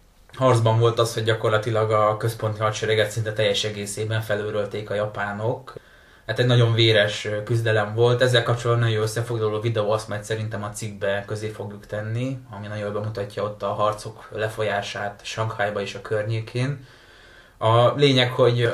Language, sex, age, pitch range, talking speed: Hungarian, male, 20-39, 105-120 Hz, 155 wpm